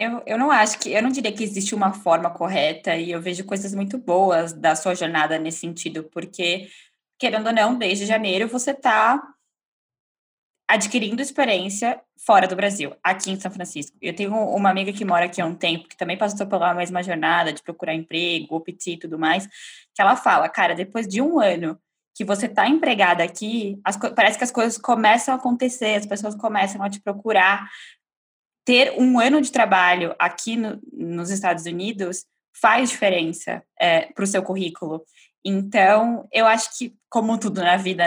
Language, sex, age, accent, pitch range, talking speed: Portuguese, female, 10-29, Brazilian, 175-225 Hz, 185 wpm